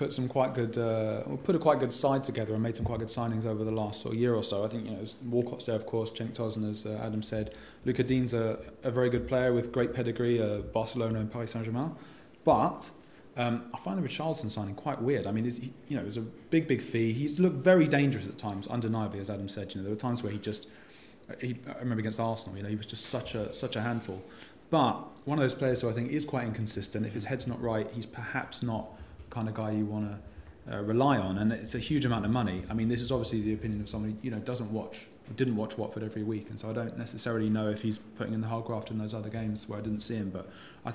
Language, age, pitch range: English, 30-49, 105-125 Hz